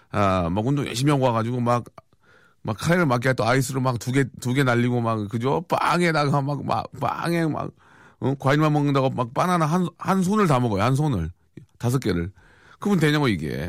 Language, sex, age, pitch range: Korean, male, 40-59, 100-135 Hz